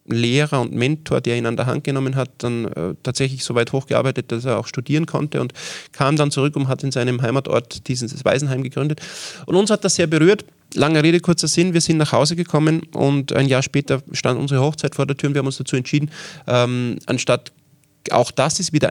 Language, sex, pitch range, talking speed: German, male, 125-150 Hz, 220 wpm